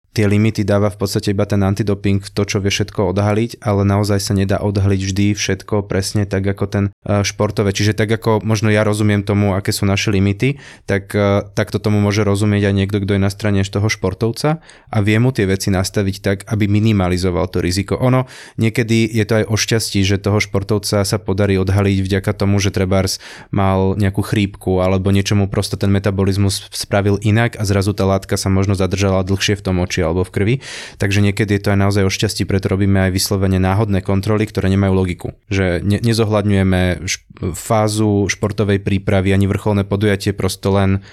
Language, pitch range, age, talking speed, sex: Slovak, 100-105 Hz, 20-39, 190 wpm, male